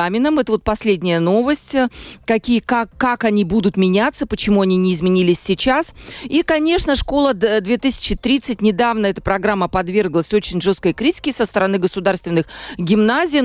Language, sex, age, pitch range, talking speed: Russian, female, 40-59, 195-260 Hz, 135 wpm